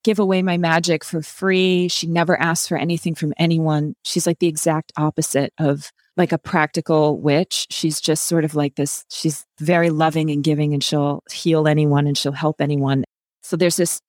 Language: English